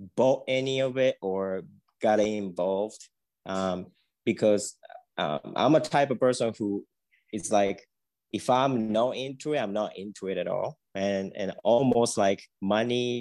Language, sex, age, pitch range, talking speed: English, male, 20-39, 95-115 Hz, 155 wpm